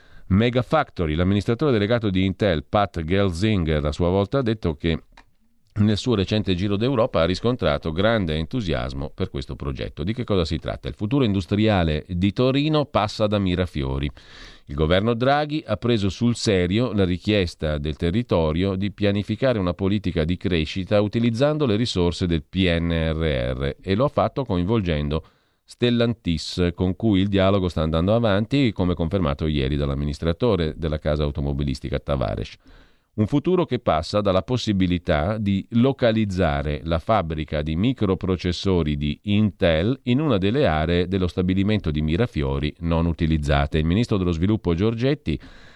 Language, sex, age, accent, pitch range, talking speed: Italian, male, 40-59, native, 80-110 Hz, 145 wpm